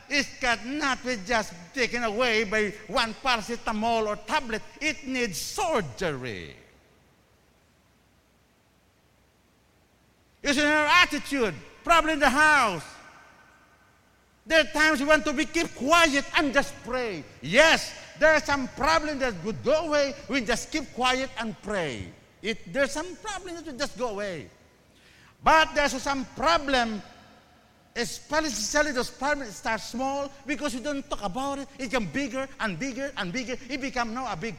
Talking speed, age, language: 145 wpm, 50-69, English